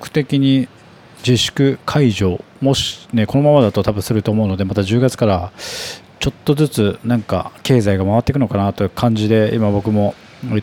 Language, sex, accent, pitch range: Japanese, male, native, 105-135 Hz